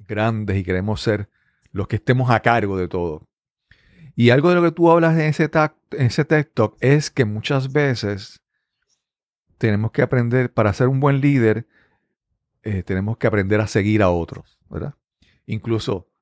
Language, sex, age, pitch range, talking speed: Spanish, male, 40-59, 105-135 Hz, 165 wpm